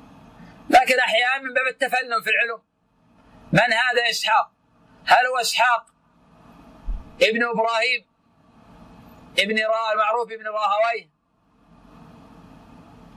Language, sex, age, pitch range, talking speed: Arabic, male, 50-69, 220-255 Hz, 90 wpm